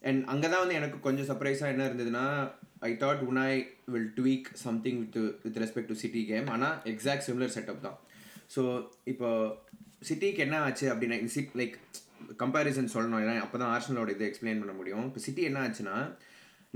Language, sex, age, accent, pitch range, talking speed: Tamil, male, 20-39, native, 115-140 Hz, 175 wpm